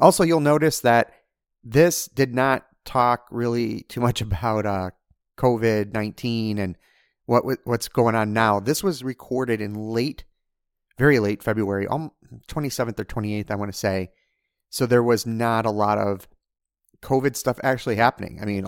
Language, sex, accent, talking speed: English, male, American, 155 wpm